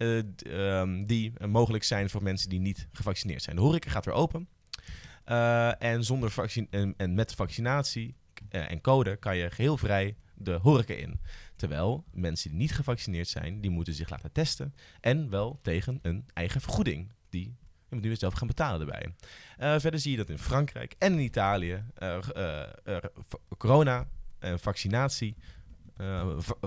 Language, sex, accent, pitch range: Dutch, male, Dutch, 95-130 Hz